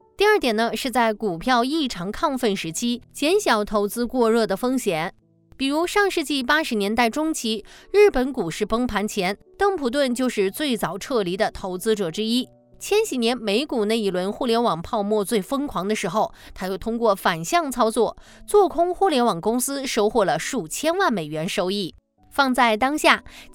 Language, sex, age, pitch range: Chinese, female, 20-39, 205-290 Hz